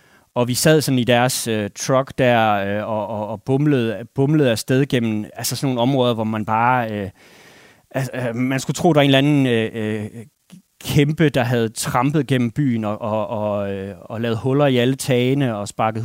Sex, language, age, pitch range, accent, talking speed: male, Danish, 30-49, 115-145 Hz, native, 200 wpm